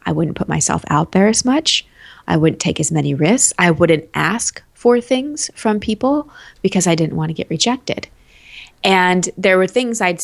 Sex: female